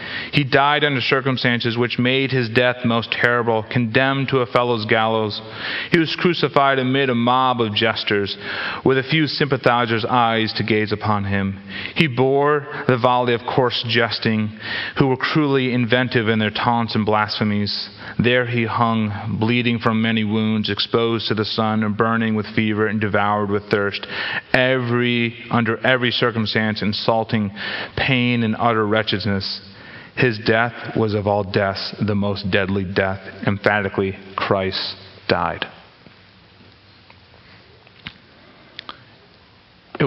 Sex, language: male, English